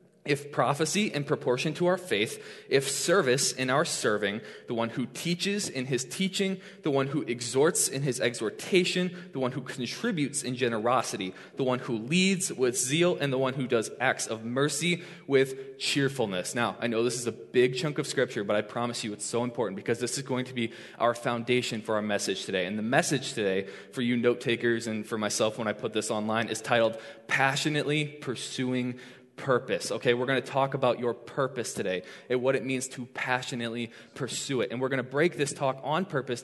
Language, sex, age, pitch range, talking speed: English, male, 20-39, 120-145 Hz, 205 wpm